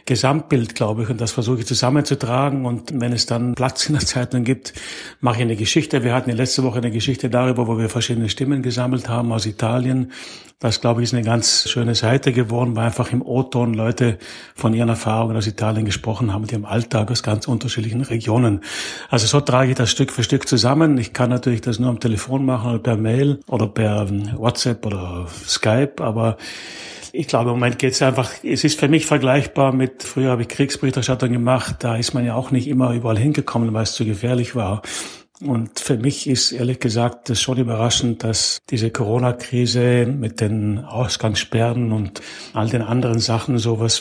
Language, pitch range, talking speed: German, 115-130 Hz, 195 wpm